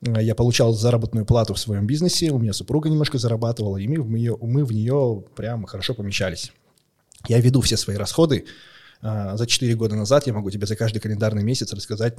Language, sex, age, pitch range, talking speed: Russian, male, 20-39, 110-130 Hz, 190 wpm